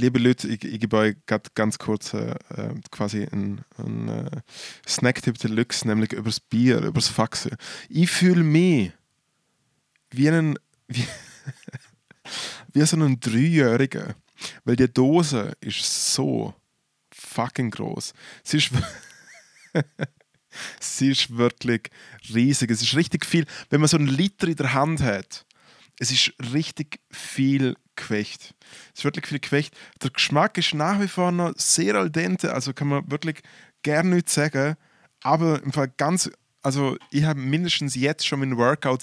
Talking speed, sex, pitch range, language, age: 145 wpm, male, 115-150 Hz, German, 20-39